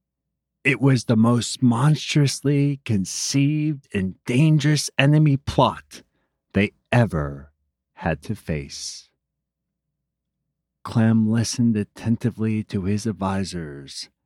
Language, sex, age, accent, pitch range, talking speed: English, male, 40-59, American, 80-120 Hz, 90 wpm